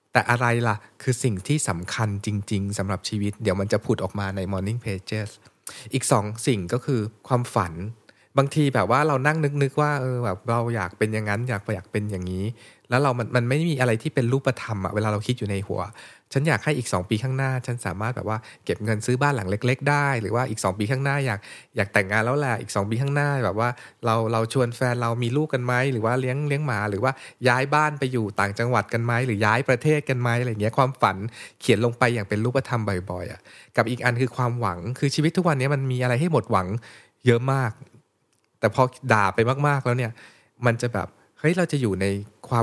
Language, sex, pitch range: Thai, male, 105-130 Hz